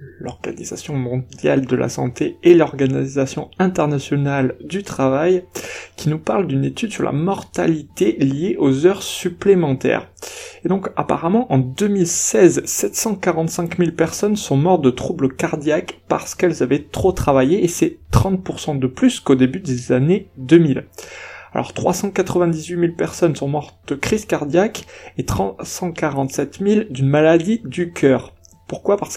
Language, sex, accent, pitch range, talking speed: French, male, French, 135-185 Hz, 140 wpm